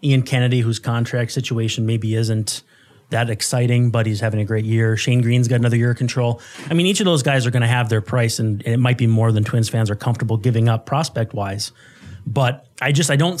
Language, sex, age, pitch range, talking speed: English, male, 30-49, 115-135 Hz, 235 wpm